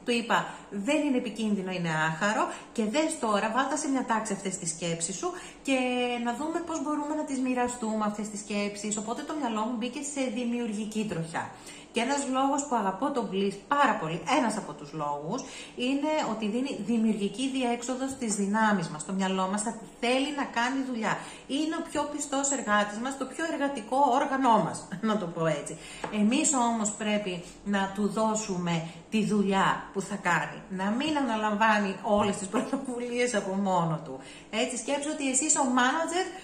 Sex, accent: female, native